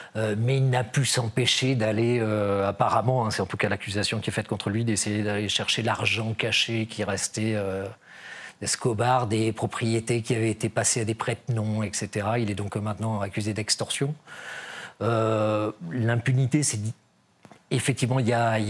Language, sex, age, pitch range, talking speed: French, male, 40-59, 105-125 Hz, 170 wpm